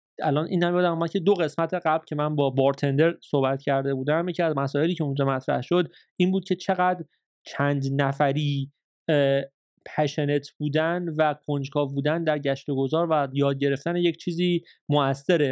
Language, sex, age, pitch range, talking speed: Persian, male, 30-49, 140-165 Hz, 170 wpm